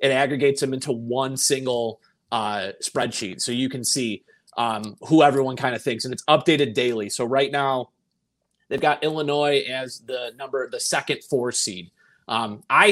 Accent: American